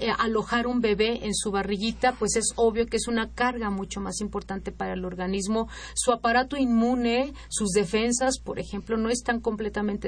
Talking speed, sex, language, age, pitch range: 175 wpm, female, Spanish, 40-59, 205-240 Hz